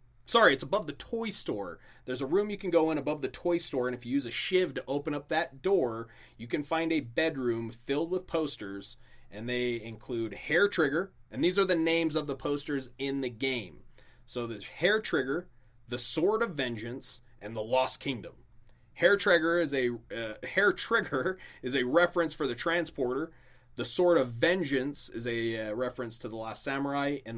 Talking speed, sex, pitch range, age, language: 190 wpm, male, 120-160 Hz, 30-49, English